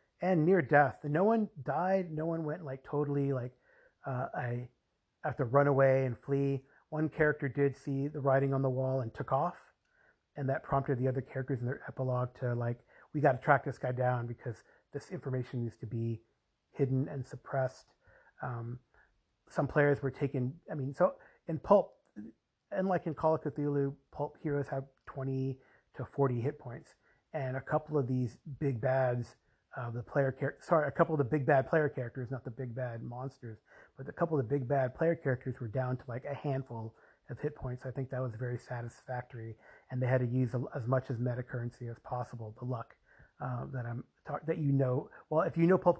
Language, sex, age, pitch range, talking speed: English, male, 30-49, 125-145 Hz, 205 wpm